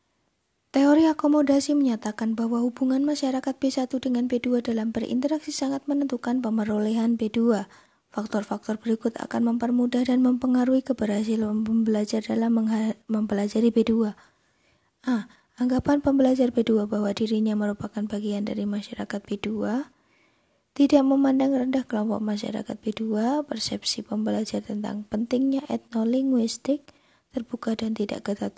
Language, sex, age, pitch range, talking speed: Indonesian, female, 20-39, 215-255 Hz, 110 wpm